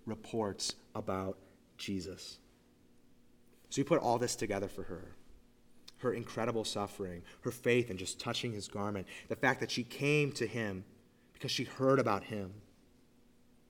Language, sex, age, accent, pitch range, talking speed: English, male, 30-49, American, 105-140 Hz, 145 wpm